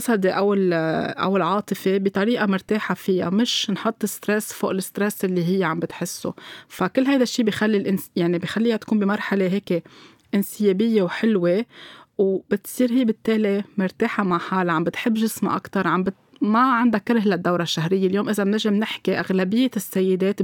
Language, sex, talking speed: Arabic, female, 150 wpm